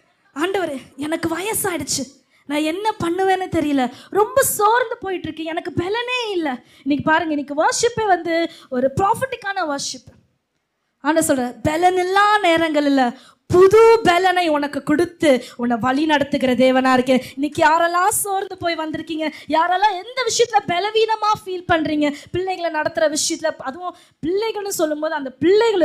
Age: 20-39